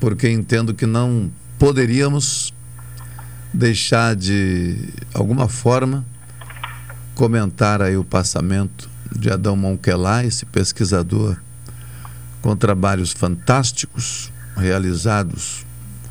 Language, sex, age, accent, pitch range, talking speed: Portuguese, male, 50-69, Brazilian, 90-120 Hz, 80 wpm